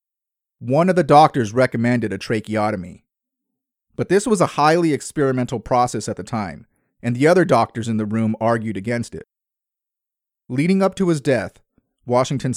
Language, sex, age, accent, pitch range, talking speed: English, male, 30-49, American, 110-140 Hz, 160 wpm